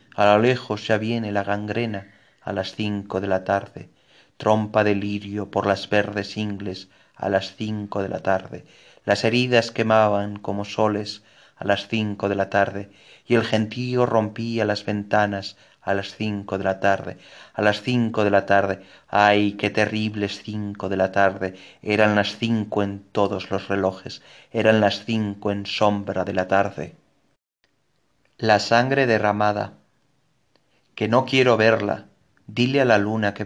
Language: Spanish